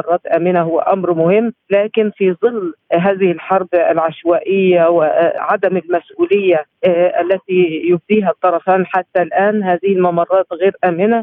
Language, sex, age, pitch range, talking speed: Arabic, female, 50-69, 170-195 Hz, 110 wpm